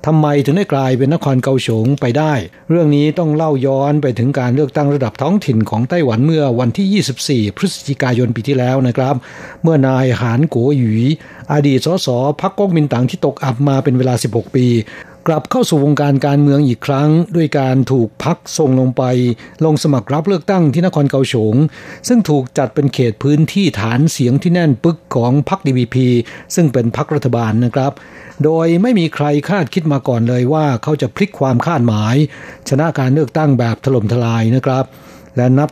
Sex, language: male, Thai